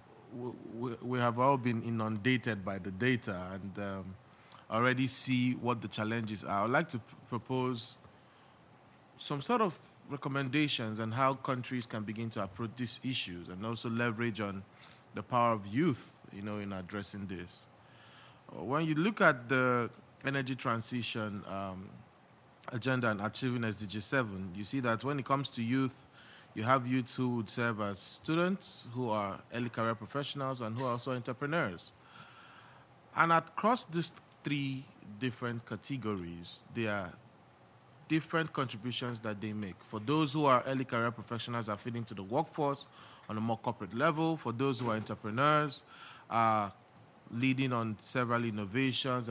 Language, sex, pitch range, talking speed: English, male, 110-130 Hz, 150 wpm